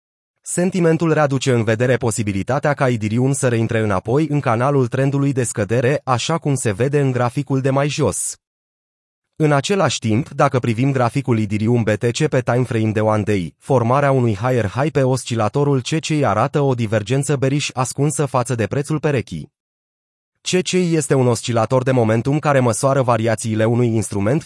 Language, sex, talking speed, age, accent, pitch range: Romanian, male, 155 wpm, 30-49, native, 115-145 Hz